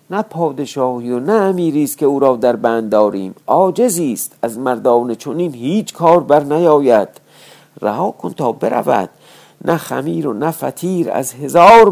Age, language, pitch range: 50-69, Persian, 110-155 Hz